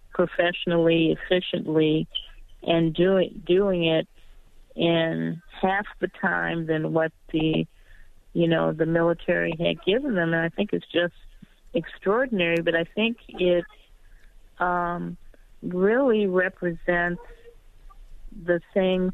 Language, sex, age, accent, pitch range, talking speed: English, female, 40-59, American, 165-185 Hz, 105 wpm